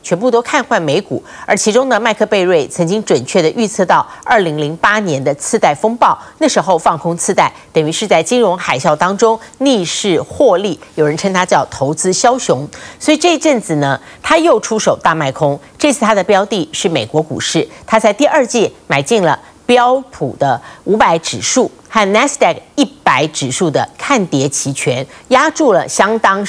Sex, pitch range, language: female, 155-245 Hz, Chinese